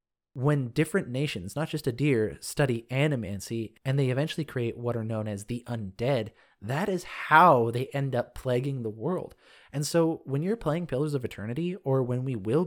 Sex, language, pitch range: male, English, 110-150 Hz